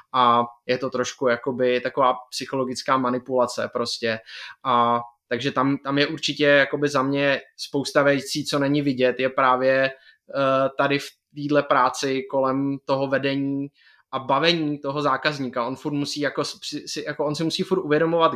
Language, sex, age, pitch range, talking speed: Czech, male, 20-39, 125-140 Hz, 150 wpm